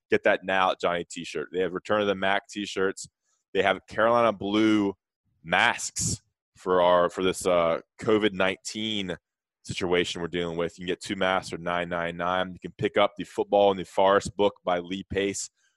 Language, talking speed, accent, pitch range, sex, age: English, 185 wpm, American, 90-105 Hz, male, 20-39